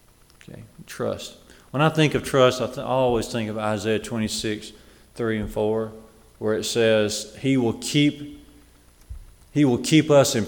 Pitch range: 110-145 Hz